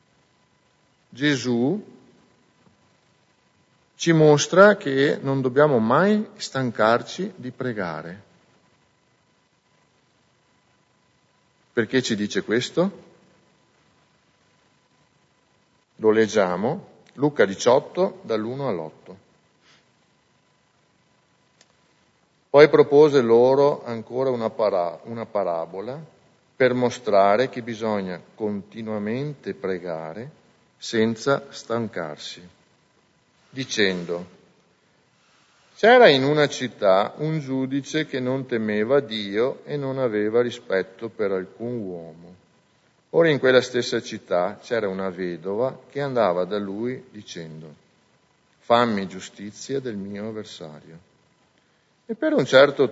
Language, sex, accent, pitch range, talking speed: English, male, Italian, 100-140 Hz, 85 wpm